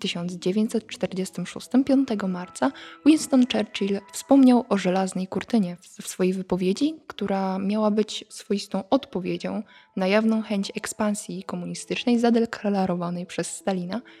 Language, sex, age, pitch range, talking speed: Polish, female, 20-39, 185-235 Hz, 115 wpm